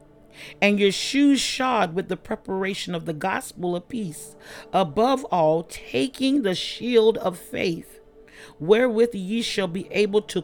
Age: 40-59